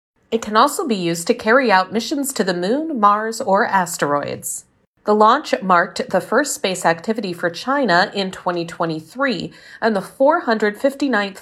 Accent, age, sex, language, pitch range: American, 40-59, female, Chinese, 175-245 Hz